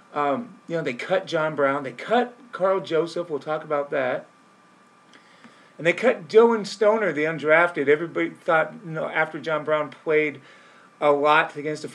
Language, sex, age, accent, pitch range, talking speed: English, male, 40-59, American, 145-205 Hz, 165 wpm